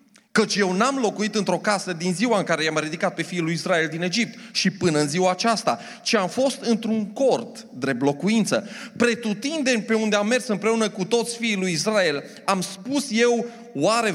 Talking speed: 190 wpm